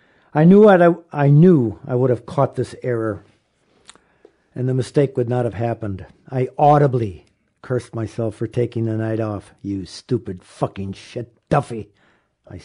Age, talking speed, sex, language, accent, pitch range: 50-69, 150 wpm, male, English, American, 110-140 Hz